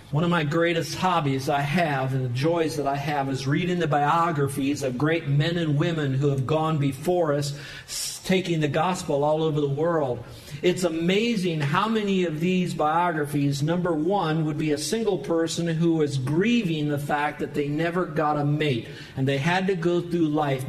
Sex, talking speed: male, 190 wpm